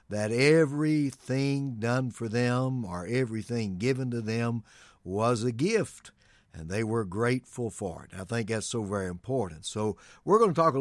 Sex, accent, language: male, American, English